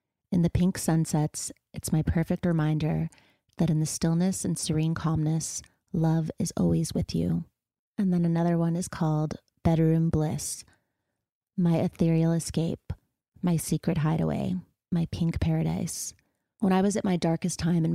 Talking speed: 150 wpm